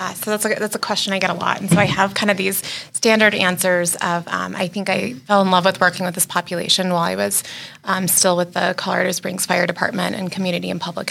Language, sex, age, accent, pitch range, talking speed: English, female, 20-39, American, 180-195 Hz, 260 wpm